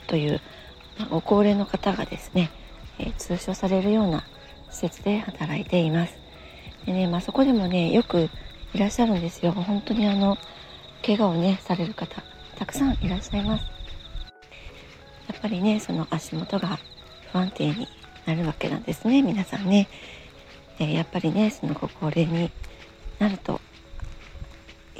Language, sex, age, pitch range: Japanese, female, 40-59, 160-210 Hz